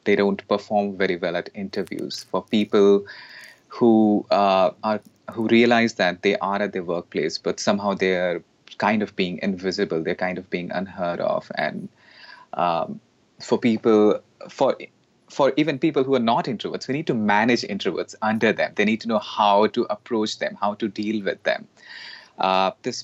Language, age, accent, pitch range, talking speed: English, 30-49, Indian, 100-115 Hz, 175 wpm